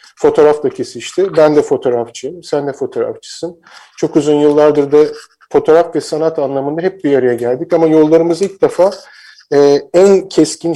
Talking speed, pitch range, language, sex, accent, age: 150 wpm, 135-160 Hz, Turkish, male, native, 50-69